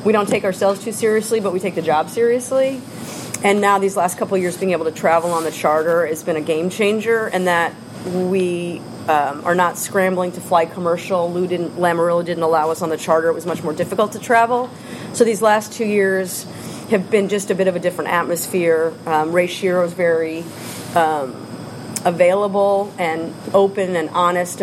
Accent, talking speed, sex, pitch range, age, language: American, 200 wpm, female, 165-195 Hz, 40-59, English